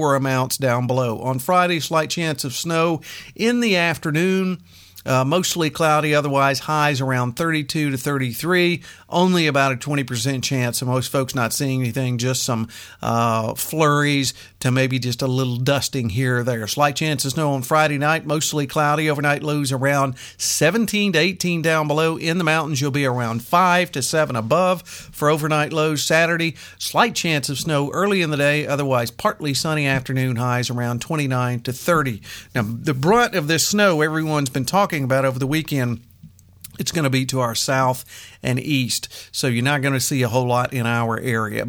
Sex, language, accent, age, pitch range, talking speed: male, English, American, 50-69, 130-160 Hz, 185 wpm